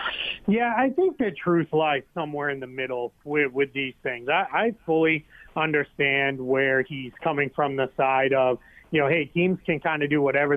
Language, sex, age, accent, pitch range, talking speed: English, male, 30-49, American, 140-170 Hz, 195 wpm